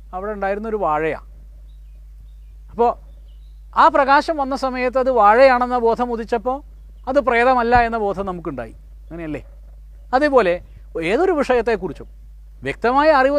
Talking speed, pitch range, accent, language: 105 wpm, 180-275 Hz, native, Malayalam